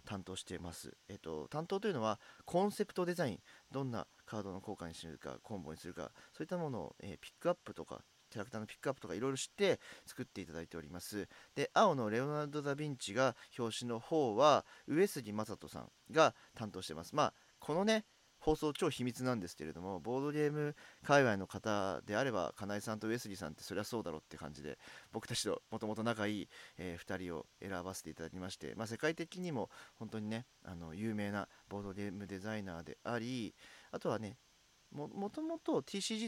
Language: Japanese